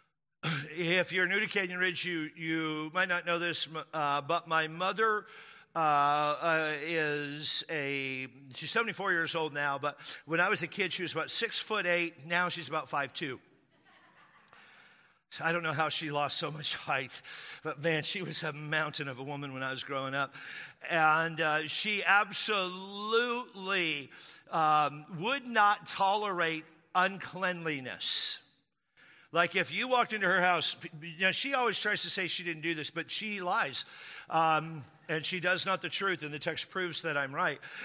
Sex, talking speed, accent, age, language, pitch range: male, 170 wpm, American, 50-69, English, 155-195 Hz